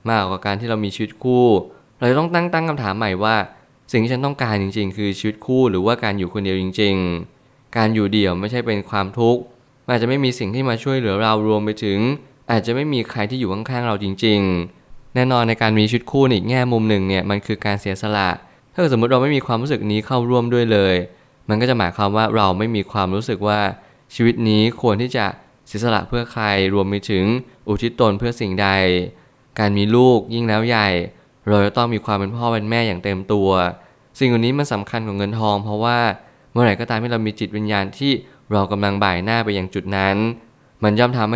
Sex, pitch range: male, 100-120 Hz